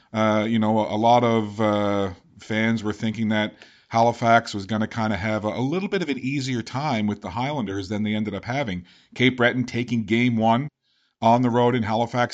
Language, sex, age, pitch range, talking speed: English, male, 40-59, 115-135 Hz, 215 wpm